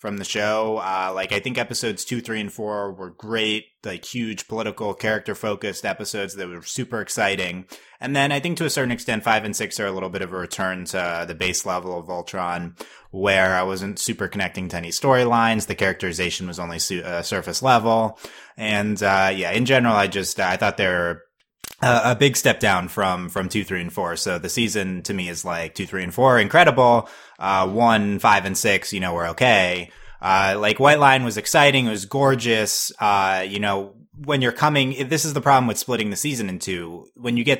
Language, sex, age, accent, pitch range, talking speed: English, male, 20-39, American, 95-115 Hz, 215 wpm